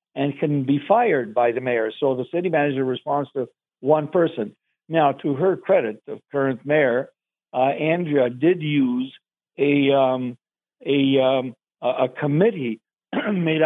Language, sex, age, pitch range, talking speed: English, male, 60-79, 135-160 Hz, 145 wpm